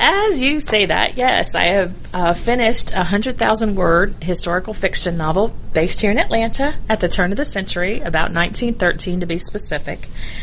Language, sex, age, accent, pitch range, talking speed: English, female, 40-59, American, 170-205 Hz, 165 wpm